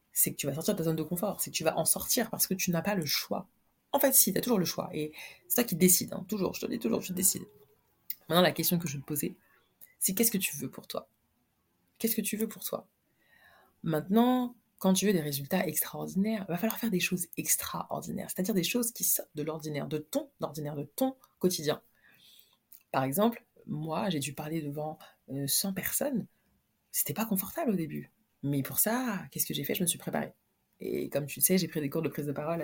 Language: French